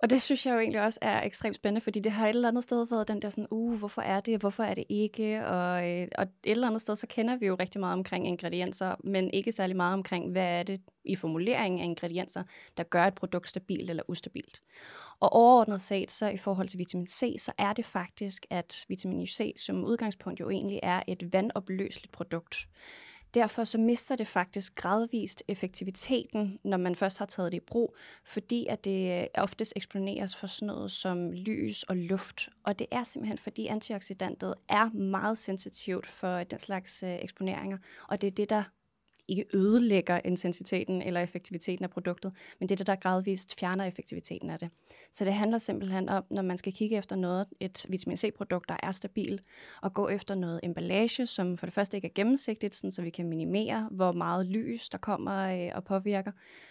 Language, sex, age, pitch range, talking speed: Danish, female, 20-39, 180-215 Hz, 200 wpm